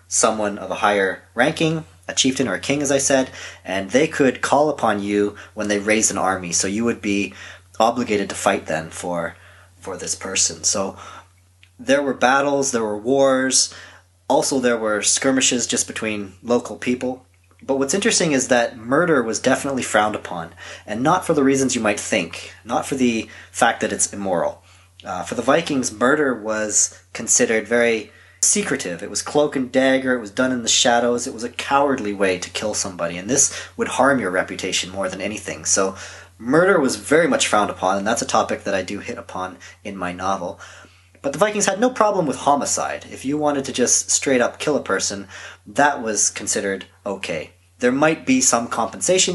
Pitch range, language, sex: 95-135 Hz, English, male